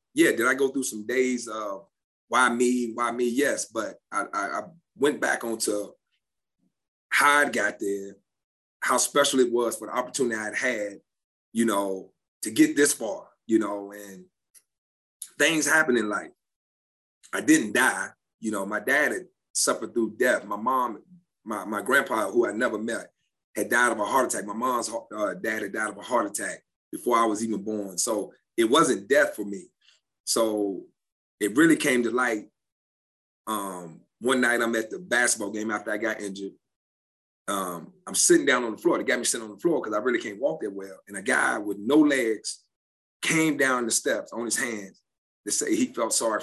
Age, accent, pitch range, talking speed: 30-49, American, 105-145 Hz, 195 wpm